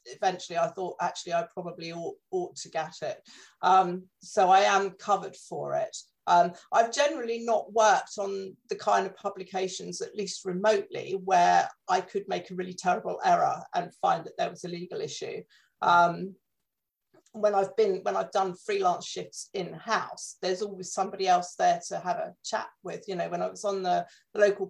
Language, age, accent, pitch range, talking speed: English, 40-59, British, 180-225 Hz, 185 wpm